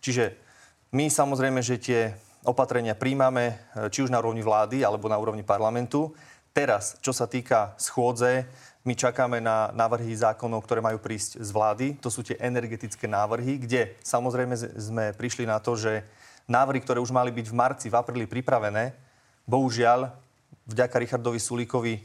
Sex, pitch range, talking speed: male, 110-125 Hz, 155 wpm